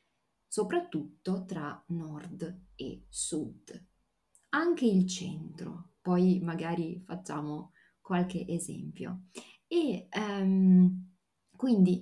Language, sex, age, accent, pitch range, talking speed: Italian, female, 30-49, native, 170-200 Hz, 75 wpm